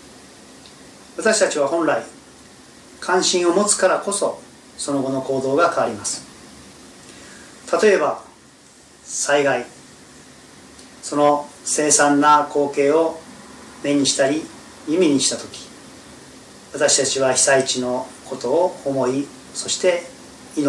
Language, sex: Japanese, male